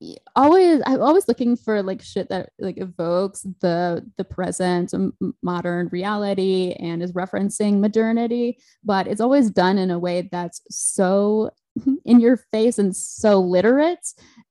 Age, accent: 20-39, American